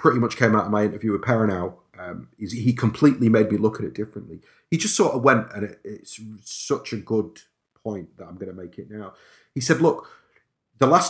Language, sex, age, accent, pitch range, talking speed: English, male, 40-59, British, 105-125 Hz, 225 wpm